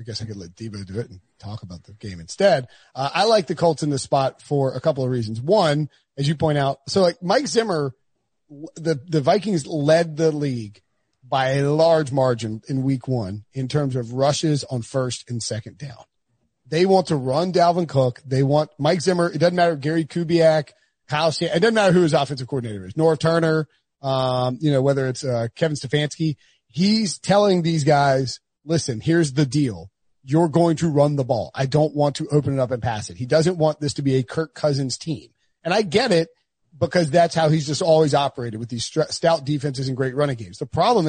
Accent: American